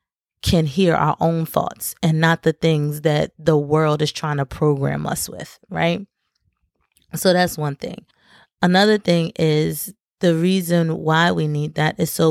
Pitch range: 160-190 Hz